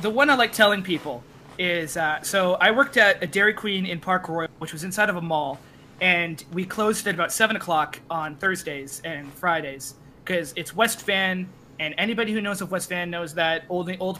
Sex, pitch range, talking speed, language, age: male, 150-190 Hz, 210 wpm, English, 20-39